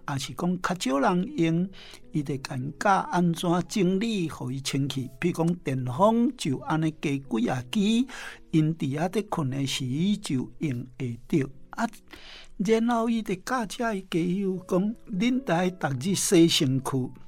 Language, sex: Chinese, male